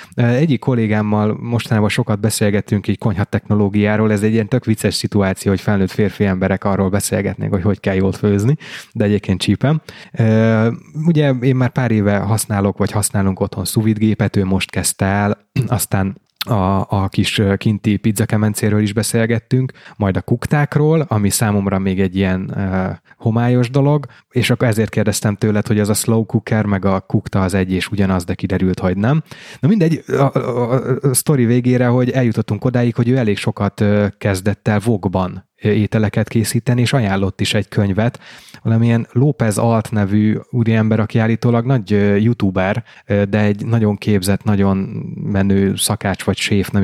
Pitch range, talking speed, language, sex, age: 100-120 Hz, 165 wpm, Hungarian, male, 20-39